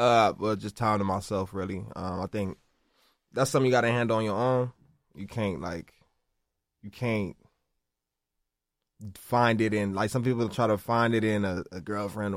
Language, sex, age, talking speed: English, male, 20-39, 180 wpm